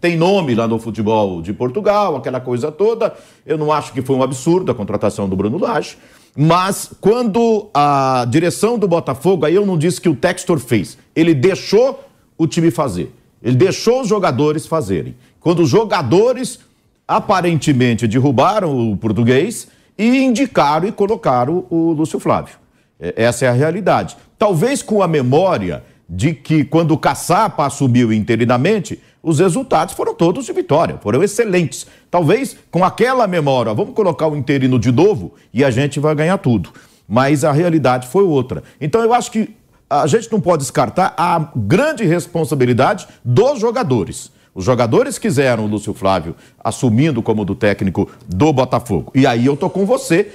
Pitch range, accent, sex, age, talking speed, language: 125-185 Hz, Brazilian, male, 50-69, 160 wpm, Portuguese